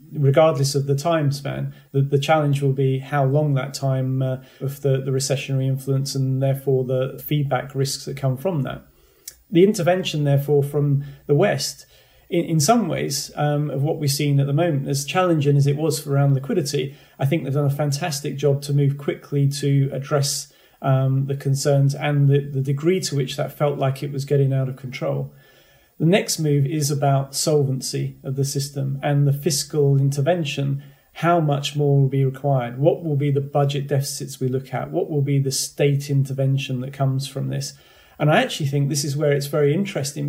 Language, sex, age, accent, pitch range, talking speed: English, male, 30-49, British, 135-145 Hz, 200 wpm